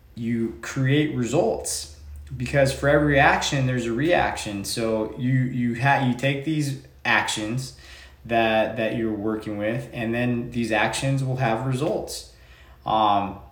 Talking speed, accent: 140 wpm, American